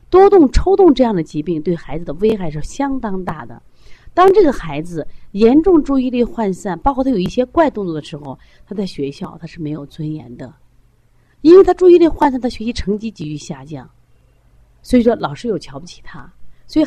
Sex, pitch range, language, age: female, 150-235 Hz, Chinese, 30-49